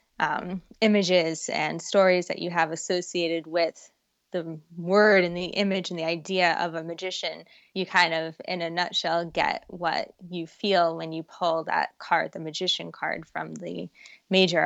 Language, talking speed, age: English, 170 wpm, 20-39